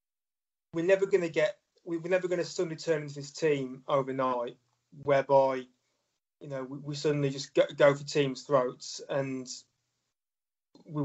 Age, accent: 30-49, British